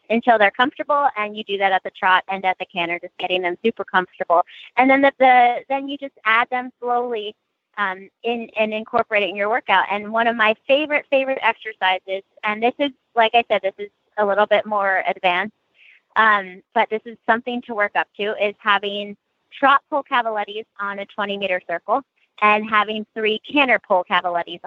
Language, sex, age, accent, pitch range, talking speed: English, female, 20-39, American, 195-235 Hz, 200 wpm